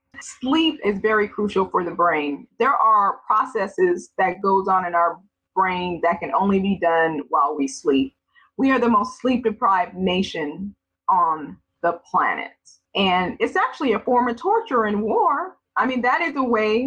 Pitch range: 190-255 Hz